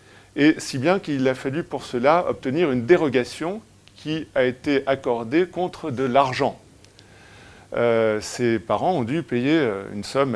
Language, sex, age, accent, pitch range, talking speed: French, male, 40-59, French, 110-145 Hz, 150 wpm